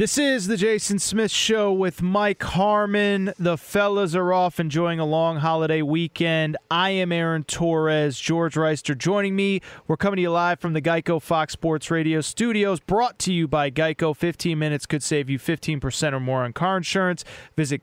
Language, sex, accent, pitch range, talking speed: English, male, American, 150-185 Hz, 185 wpm